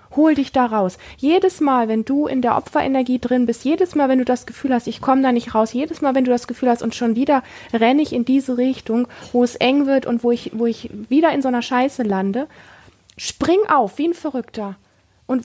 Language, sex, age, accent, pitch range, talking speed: German, female, 20-39, German, 240-280 Hz, 235 wpm